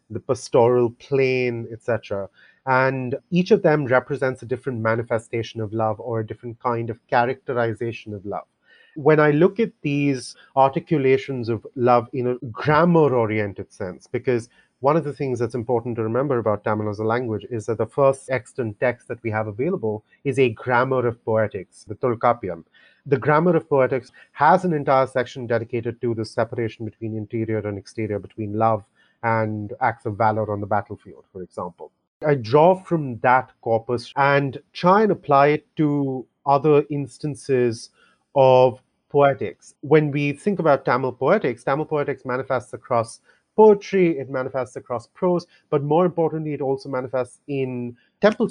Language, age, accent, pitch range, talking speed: English, 30-49, Indian, 115-145 Hz, 160 wpm